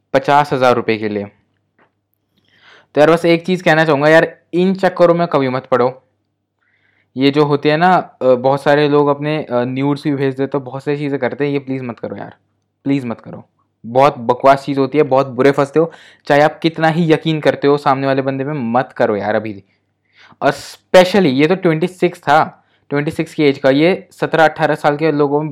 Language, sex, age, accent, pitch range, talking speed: Hindi, male, 20-39, native, 135-170 Hz, 205 wpm